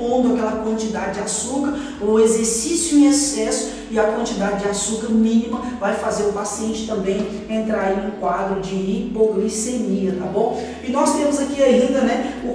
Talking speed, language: 165 wpm, Portuguese